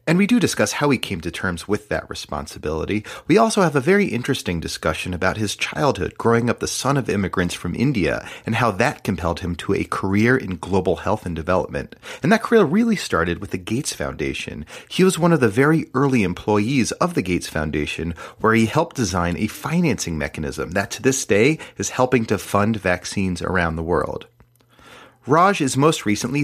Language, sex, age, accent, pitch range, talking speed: English, male, 30-49, American, 90-140 Hz, 195 wpm